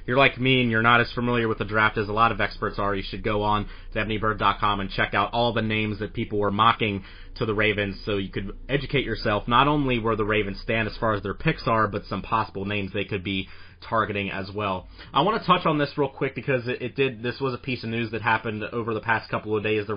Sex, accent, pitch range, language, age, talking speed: male, American, 105-125 Hz, English, 30-49, 265 wpm